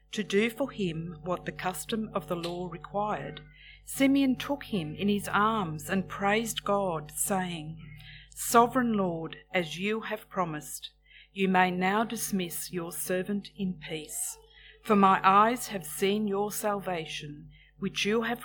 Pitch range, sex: 165-210 Hz, female